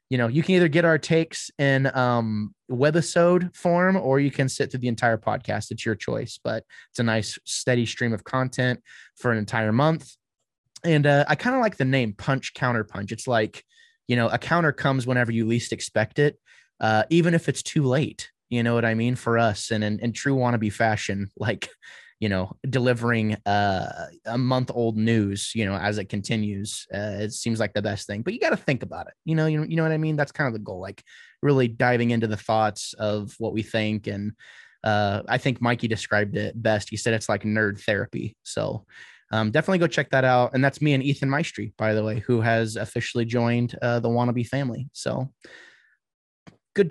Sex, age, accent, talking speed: male, 20-39, American, 215 wpm